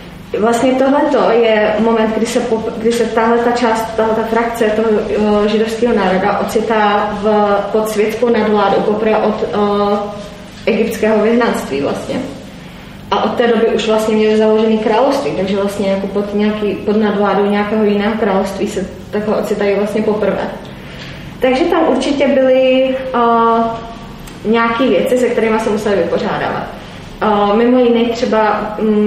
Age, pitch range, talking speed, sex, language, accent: 20-39, 205-230 Hz, 135 wpm, female, Czech, native